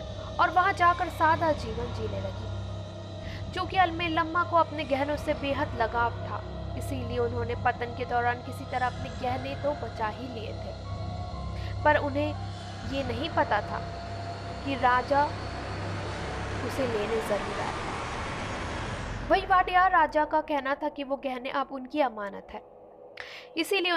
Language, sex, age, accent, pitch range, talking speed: Hindi, female, 20-39, native, 215-290 Hz, 145 wpm